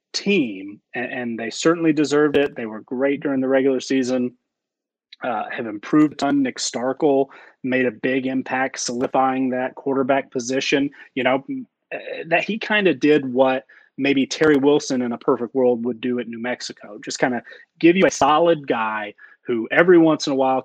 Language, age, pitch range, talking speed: English, 30-49, 130-160 Hz, 175 wpm